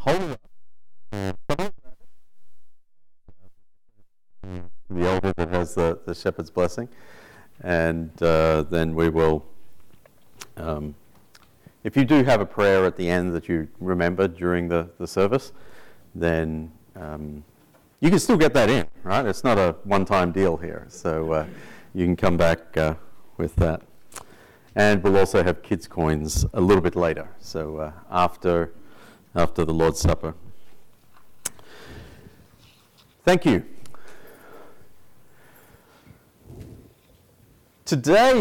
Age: 40-59